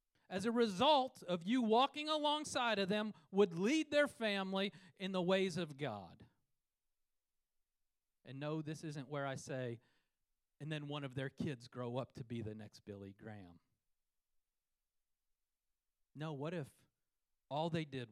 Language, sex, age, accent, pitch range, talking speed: English, male, 40-59, American, 100-165 Hz, 150 wpm